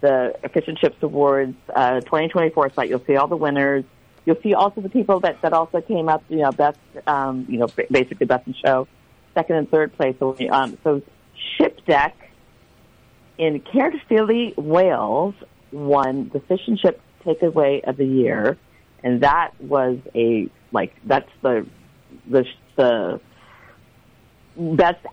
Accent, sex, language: American, female, English